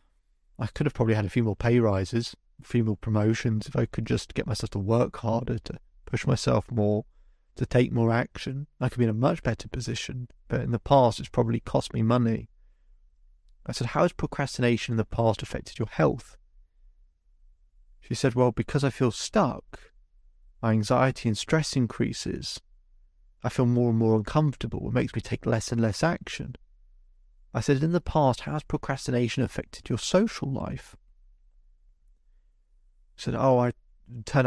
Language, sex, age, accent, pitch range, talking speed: English, male, 30-49, British, 75-125 Hz, 180 wpm